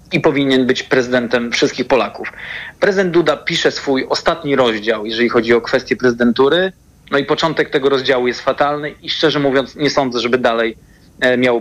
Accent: native